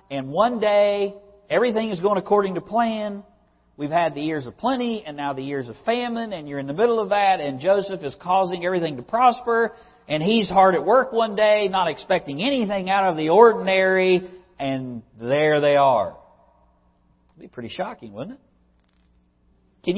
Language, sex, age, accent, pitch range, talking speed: English, male, 50-69, American, 105-170 Hz, 185 wpm